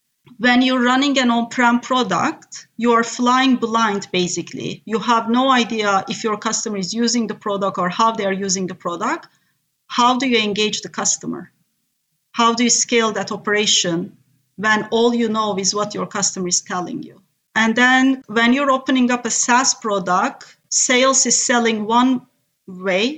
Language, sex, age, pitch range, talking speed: English, female, 40-59, 200-240 Hz, 175 wpm